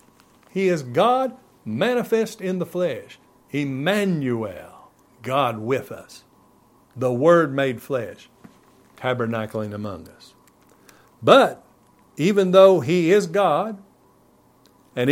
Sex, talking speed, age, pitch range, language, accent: male, 100 wpm, 60-79, 120-180 Hz, English, American